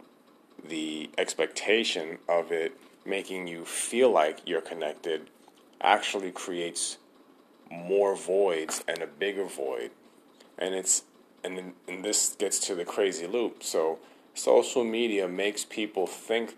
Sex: male